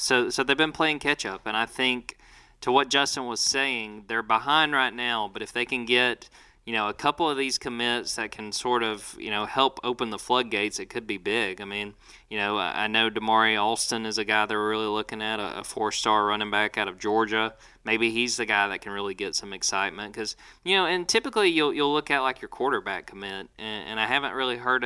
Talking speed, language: 230 wpm, English